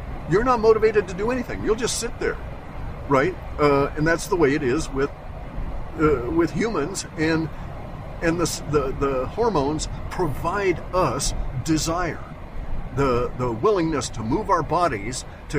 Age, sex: 50-69, male